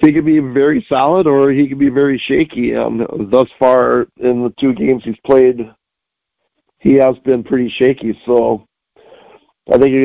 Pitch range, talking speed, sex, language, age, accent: 115-135 Hz, 175 wpm, male, English, 40-59, American